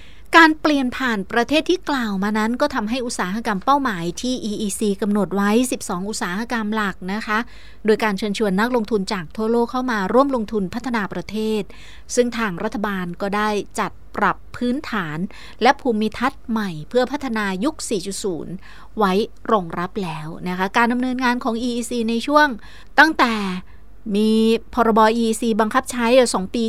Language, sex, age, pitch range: Thai, female, 30-49, 195-245 Hz